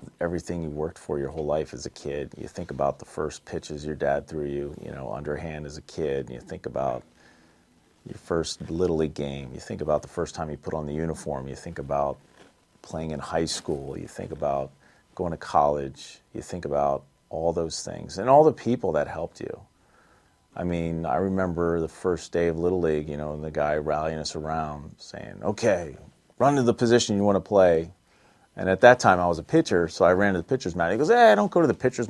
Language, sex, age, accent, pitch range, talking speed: English, male, 40-59, American, 75-100 Hz, 230 wpm